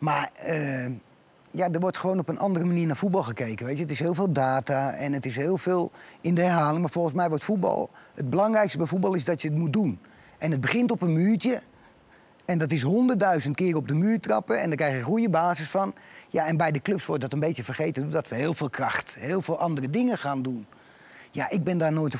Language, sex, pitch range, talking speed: Dutch, male, 150-195 Hz, 250 wpm